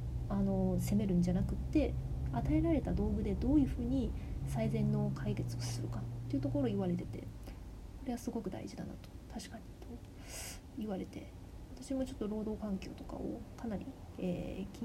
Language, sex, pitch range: Japanese, female, 180-270 Hz